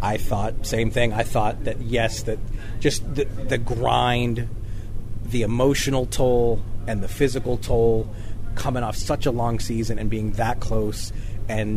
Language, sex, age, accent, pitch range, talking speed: English, male, 30-49, American, 105-135 Hz, 160 wpm